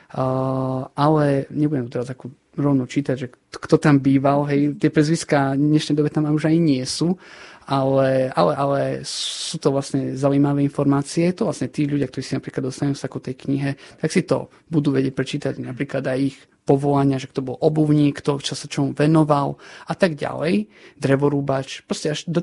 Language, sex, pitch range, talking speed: Slovak, male, 130-150 Hz, 180 wpm